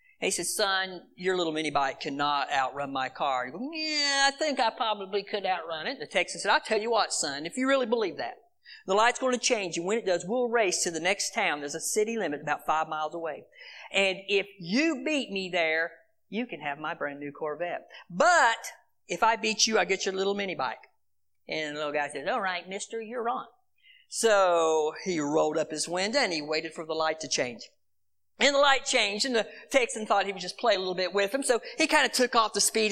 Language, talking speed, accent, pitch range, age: English, 240 wpm, American, 145-220 Hz, 50-69